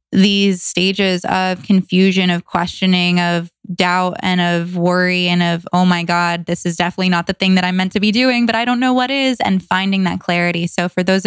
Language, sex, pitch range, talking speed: English, female, 175-210 Hz, 220 wpm